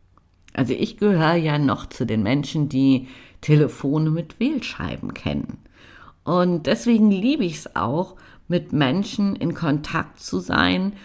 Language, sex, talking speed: German, female, 135 wpm